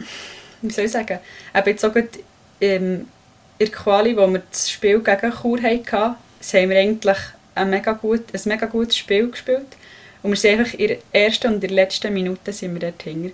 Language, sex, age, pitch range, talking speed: German, female, 10-29, 195-220 Hz, 195 wpm